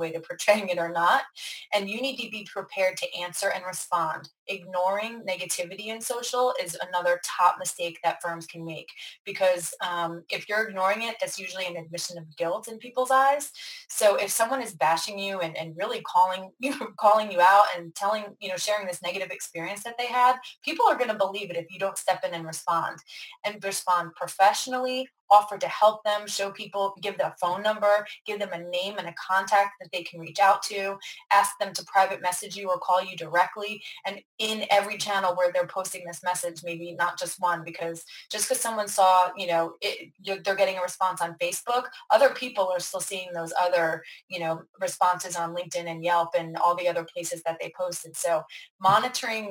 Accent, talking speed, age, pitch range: American, 205 wpm, 20-39, 175-210 Hz